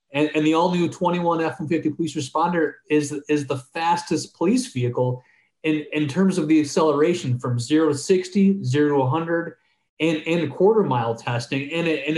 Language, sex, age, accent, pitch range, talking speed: English, male, 30-49, American, 135-170 Hz, 170 wpm